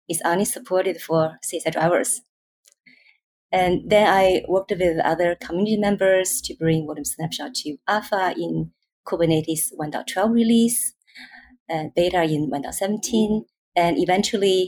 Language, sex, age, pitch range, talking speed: English, female, 20-39, 160-205 Hz, 125 wpm